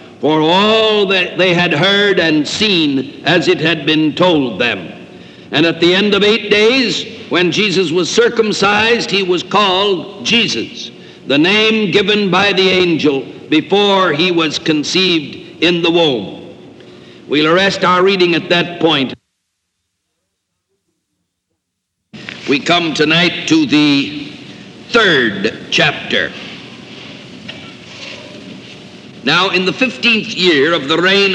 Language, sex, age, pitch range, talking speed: English, male, 60-79, 155-195 Hz, 125 wpm